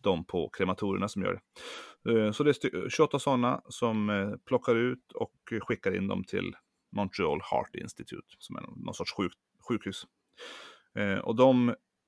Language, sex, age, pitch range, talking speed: Swedish, male, 30-49, 90-120 Hz, 150 wpm